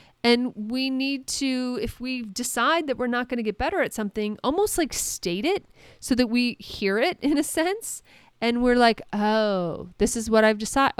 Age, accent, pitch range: 30-49, American, 195-255 Hz